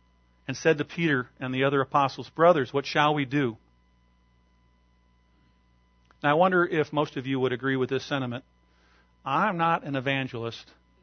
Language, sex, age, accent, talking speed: English, male, 50-69, American, 160 wpm